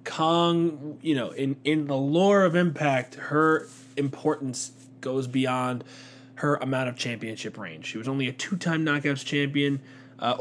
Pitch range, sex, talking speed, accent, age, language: 120-135 Hz, male, 150 wpm, American, 20-39, English